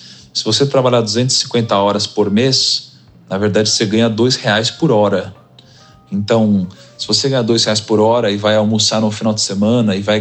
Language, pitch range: Portuguese, 110-145 Hz